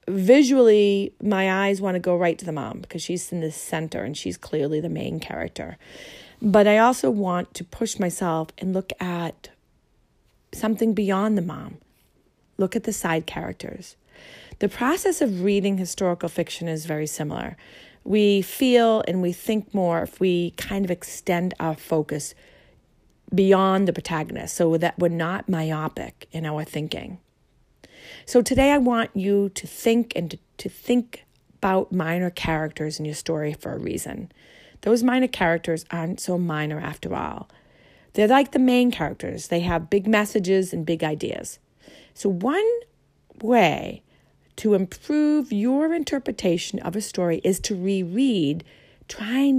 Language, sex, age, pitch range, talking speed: English, female, 40-59, 170-225 Hz, 155 wpm